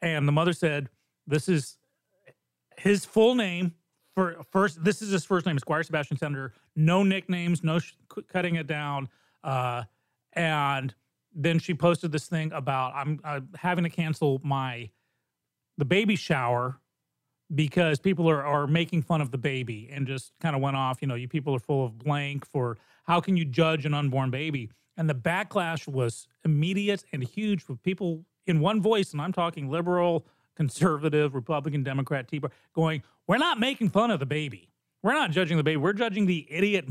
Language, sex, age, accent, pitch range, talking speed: English, male, 30-49, American, 140-175 Hz, 180 wpm